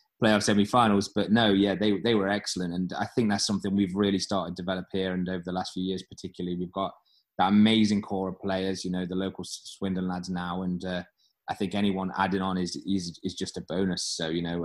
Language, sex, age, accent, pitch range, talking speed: English, male, 20-39, British, 95-105 Hz, 235 wpm